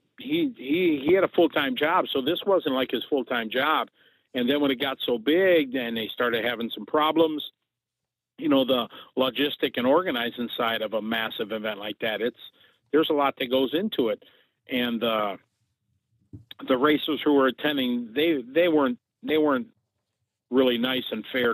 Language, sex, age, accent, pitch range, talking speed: English, male, 50-69, American, 115-145 Hz, 180 wpm